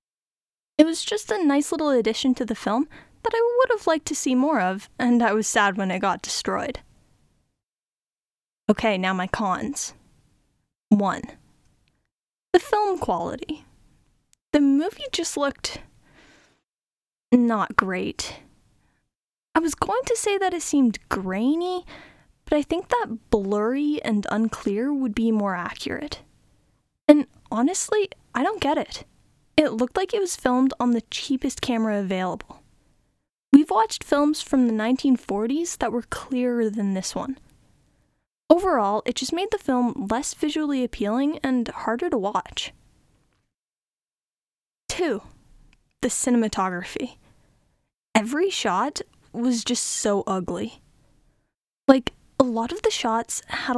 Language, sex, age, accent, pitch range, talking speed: English, female, 10-29, American, 220-315 Hz, 135 wpm